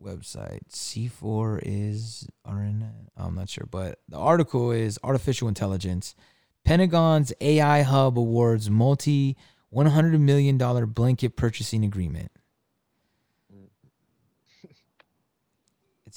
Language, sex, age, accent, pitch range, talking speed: English, male, 20-39, American, 110-140 Hz, 90 wpm